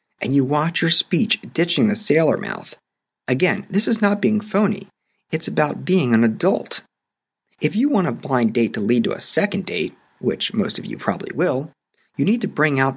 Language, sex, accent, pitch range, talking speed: English, male, American, 130-200 Hz, 200 wpm